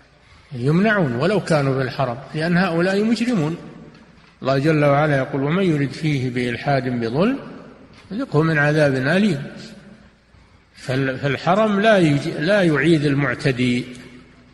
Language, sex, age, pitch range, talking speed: Arabic, male, 50-69, 135-180 Hz, 105 wpm